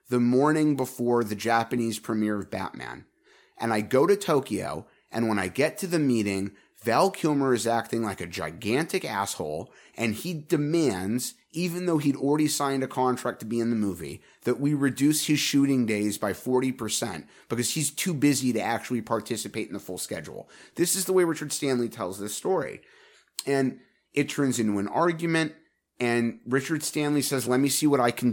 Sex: male